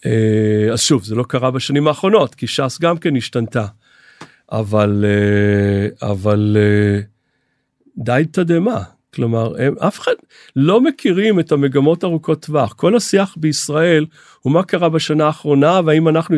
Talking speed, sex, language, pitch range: 130 wpm, male, Hebrew, 135-200 Hz